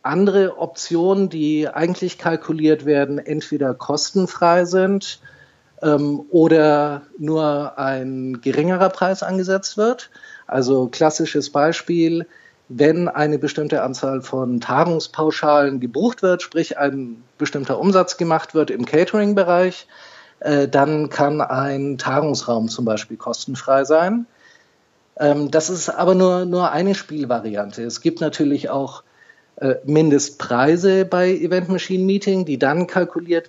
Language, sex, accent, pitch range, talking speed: German, male, German, 140-180 Hz, 115 wpm